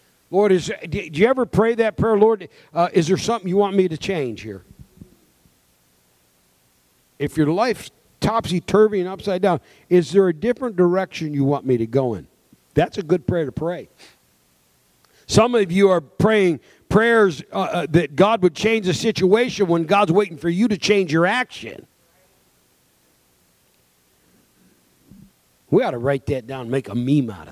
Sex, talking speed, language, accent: male, 165 wpm, English, American